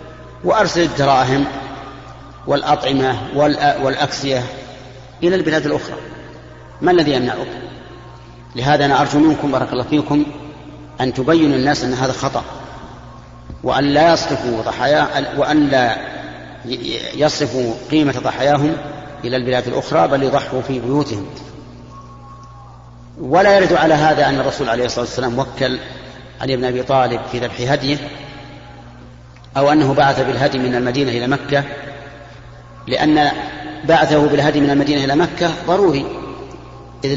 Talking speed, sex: 115 wpm, male